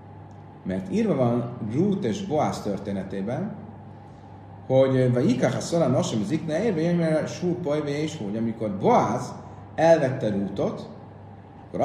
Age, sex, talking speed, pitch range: 30-49, male, 90 wpm, 110-165 Hz